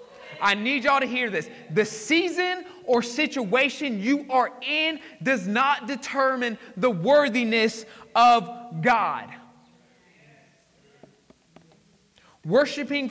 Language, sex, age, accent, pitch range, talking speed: English, male, 30-49, American, 220-270 Hz, 95 wpm